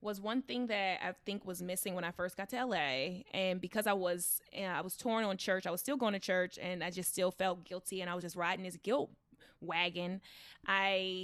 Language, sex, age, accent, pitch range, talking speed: English, female, 20-39, American, 185-250 Hz, 245 wpm